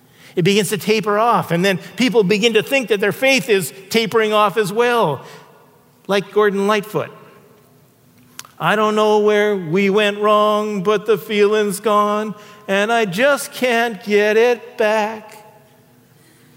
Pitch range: 175-225 Hz